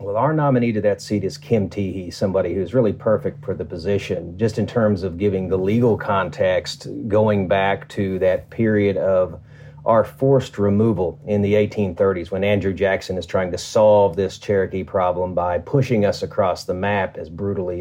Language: English